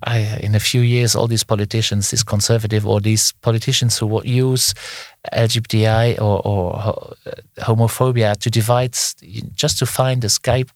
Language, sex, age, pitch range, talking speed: Greek, male, 50-69, 110-125 Hz, 145 wpm